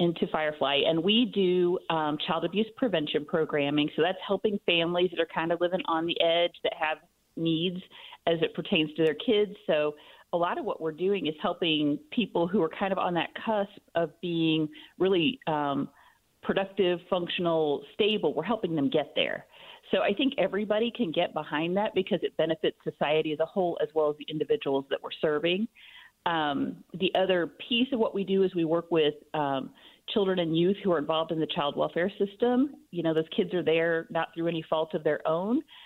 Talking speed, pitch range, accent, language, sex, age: 200 wpm, 155-195 Hz, American, English, female, 40-59